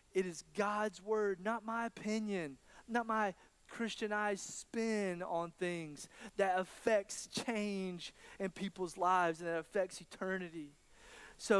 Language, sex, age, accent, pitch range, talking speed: English, male, 30-49, American, 170-205 Hz, 125 wpm